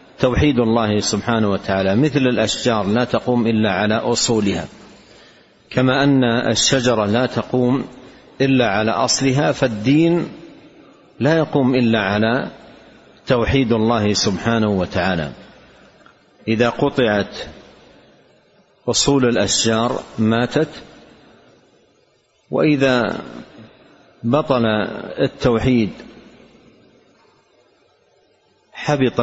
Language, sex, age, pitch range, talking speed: Arabic, male, 50-69, 105-130 Hz, 75 wpm